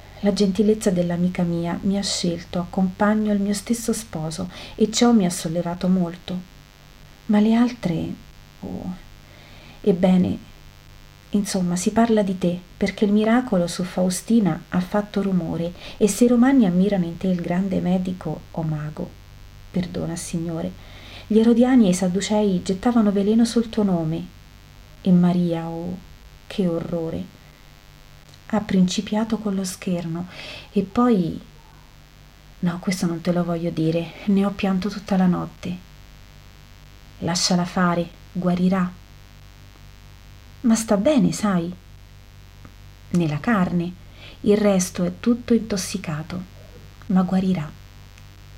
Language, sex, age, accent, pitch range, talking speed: Italian, female, 40-59, native, 160-205 Hz, 125 wpm